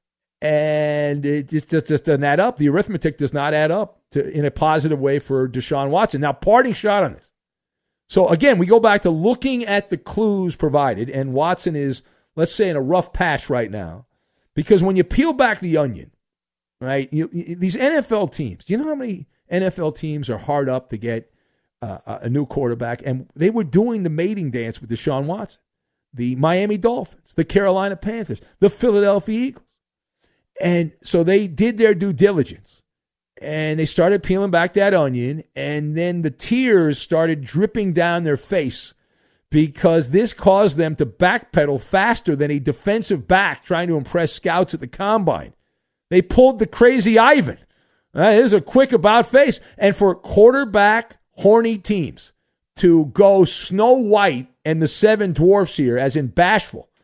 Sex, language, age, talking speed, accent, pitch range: male, English, 50-69, 175 wpm, American, 145-205 Hz